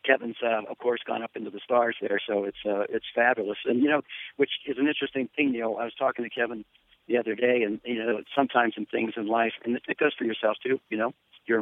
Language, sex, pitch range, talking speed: English, male, 110-135 Hz, 260 wpm